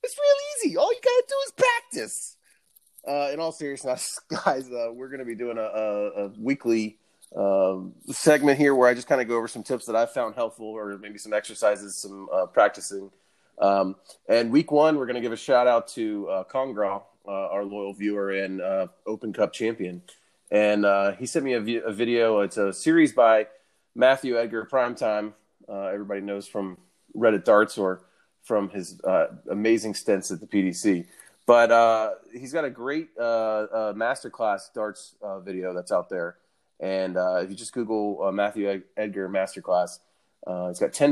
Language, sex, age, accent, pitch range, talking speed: English, male, 30-49, American, 100-120 Hz, 195 wpm